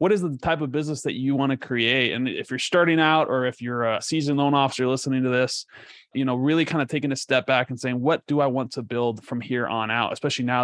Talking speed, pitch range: 275 wpm, 120-145 Hz